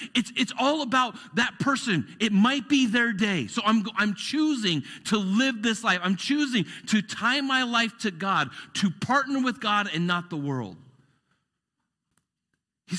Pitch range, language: 130-180 Hz, English